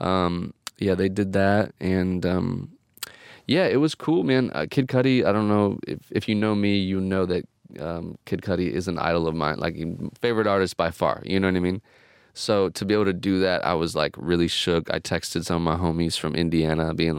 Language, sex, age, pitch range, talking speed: English, male, 30-49, 90-105 Hz, 225 wpm